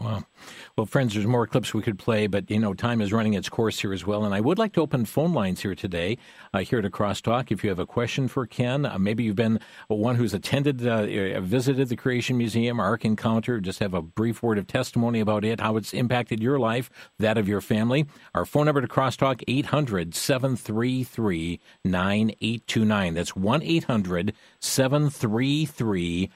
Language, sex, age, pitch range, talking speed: English, male, 50-69, 105-130 Hz, 190 wpm